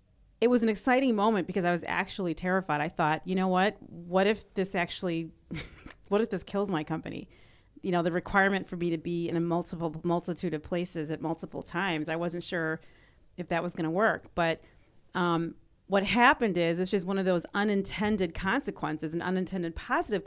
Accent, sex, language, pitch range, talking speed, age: American, female, English, 160-195 Hz, 190 wpm, 30-49